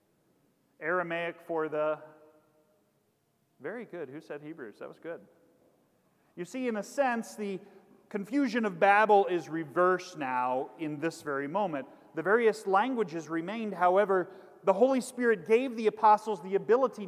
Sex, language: male, English